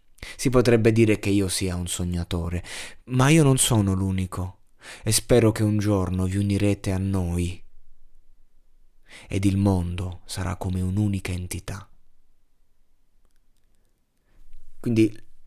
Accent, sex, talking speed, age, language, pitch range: native, male, 115 wpm, 30-49, Italian, 95-115 Hz